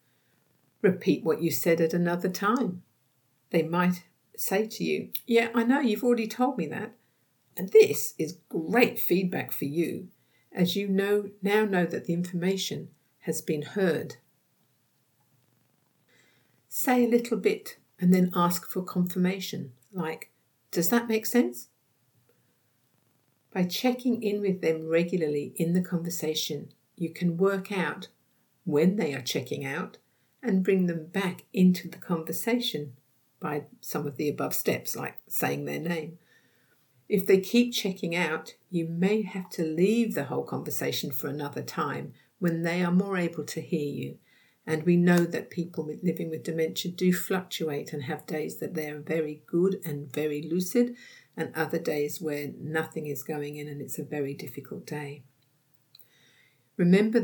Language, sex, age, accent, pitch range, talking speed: English, female, 50-69, British, 150-195 Hz, 155 wpm